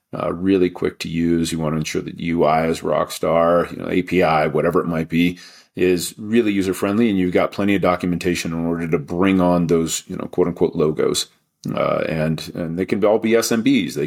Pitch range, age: 90-110 Hz, 40-59